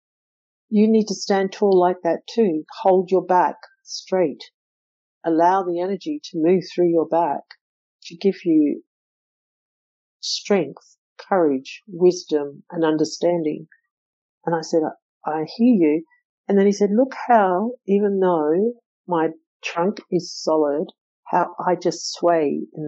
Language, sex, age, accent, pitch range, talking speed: English, female, 60-79, Australian, 160-205 Hz, 135 wpm